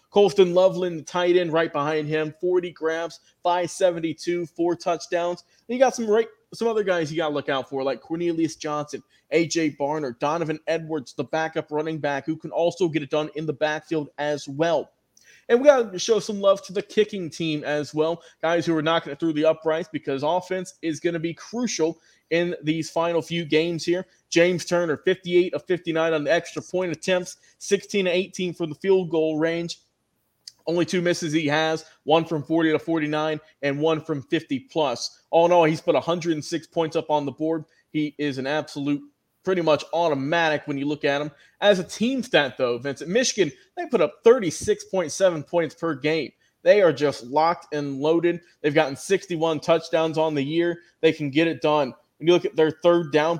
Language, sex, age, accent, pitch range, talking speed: English, male, 20-39, American, 155-180 Hz, 200 wpm